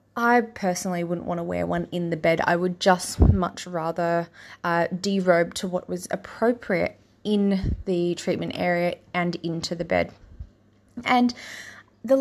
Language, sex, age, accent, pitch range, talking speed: English, female, 20-39, Australian, 175-200 Hz, 150 wpm